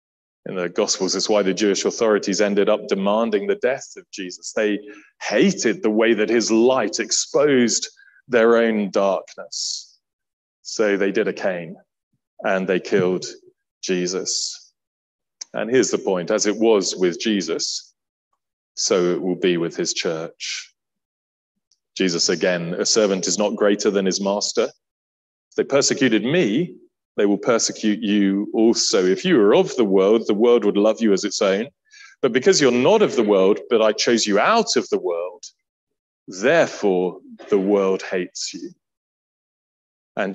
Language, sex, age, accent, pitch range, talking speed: English, male, 30-49, British, 90-115 Hz, 155 wpm